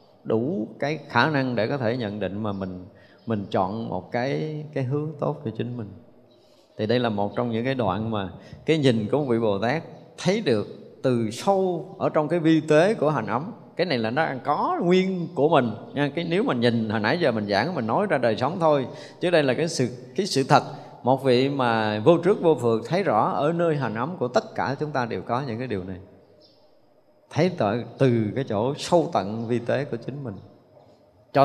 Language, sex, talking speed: Vietnamese, male, 225 wpm